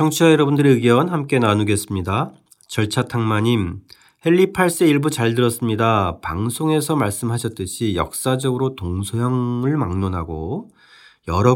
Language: Korean